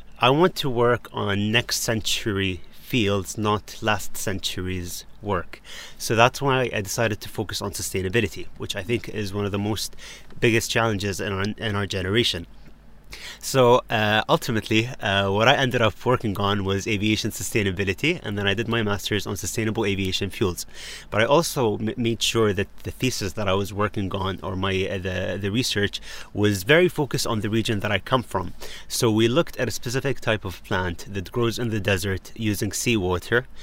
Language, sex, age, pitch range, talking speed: English, male, 30-49, 100-120 Hz, 185 wpm